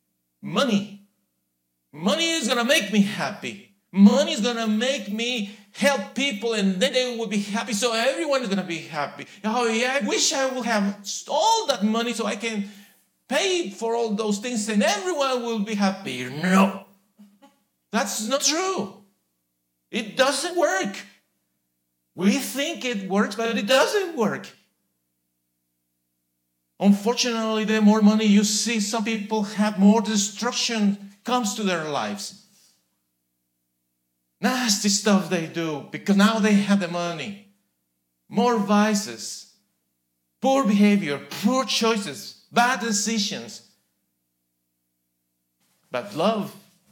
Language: English